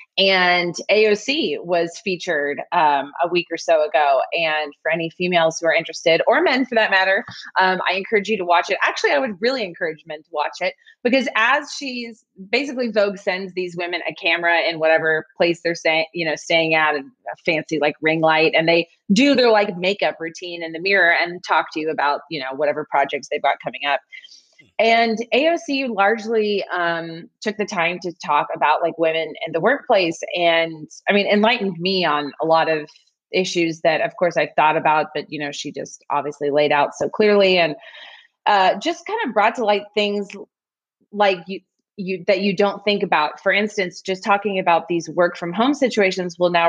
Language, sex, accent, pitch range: English, female, American, 165-210 Hz